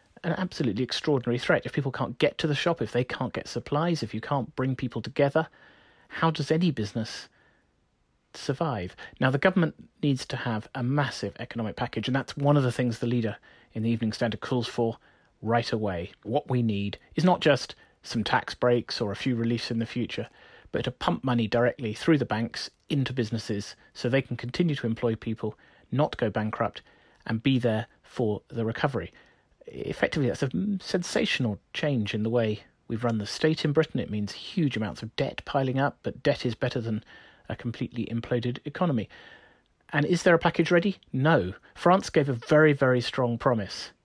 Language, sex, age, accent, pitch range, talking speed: English, male, 30-49, British, 115-145 Hz, 190 wpm